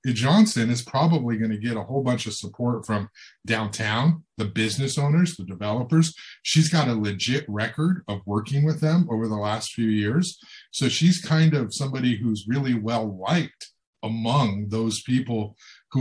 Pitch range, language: 105-135 Hz, English